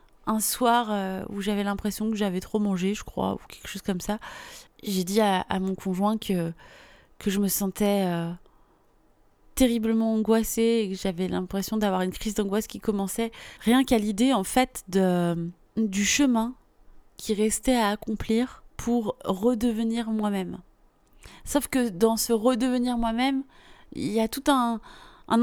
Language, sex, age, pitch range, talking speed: French, female, 20-39, 205-240 Hz, 160 wpm